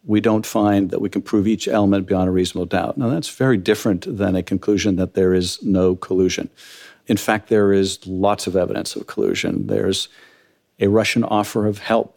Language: English